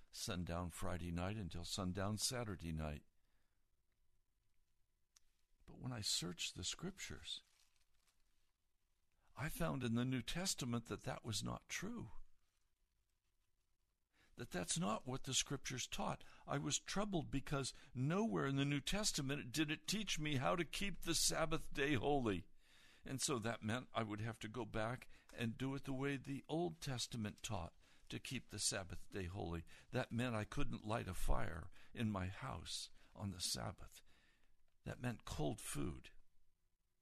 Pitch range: 90-140 Hz